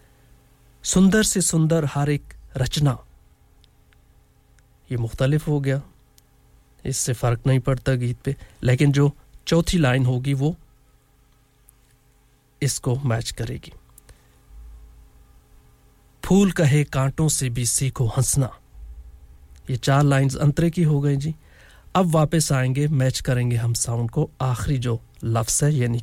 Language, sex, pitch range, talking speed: English, male, 120-145 Hz, 125 wpm